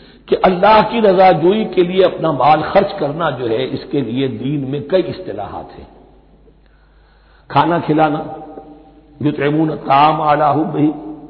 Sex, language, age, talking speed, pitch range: male, Hindi, 60-79, 120 wpm, 140-180 Hz